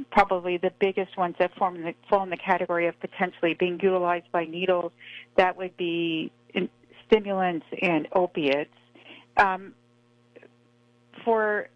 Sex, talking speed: female, 140 wpm